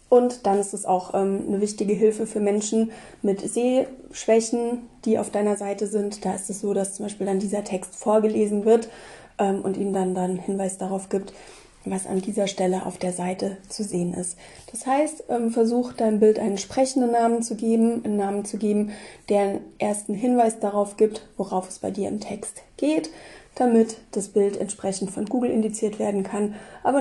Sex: female